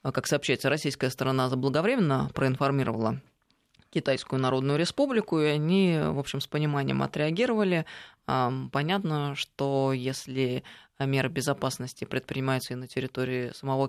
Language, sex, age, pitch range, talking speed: Russian, female, 20-39, 135-175 Hz, 110 wpm